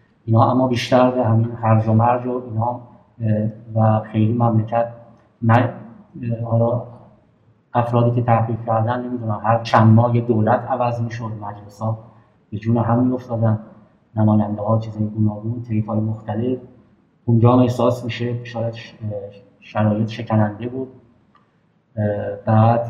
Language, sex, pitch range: Persian, male, 110-125 Hz